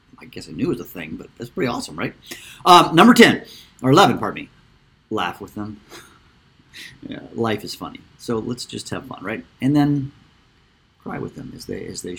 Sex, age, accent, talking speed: male, 50-69, American, 195 wpm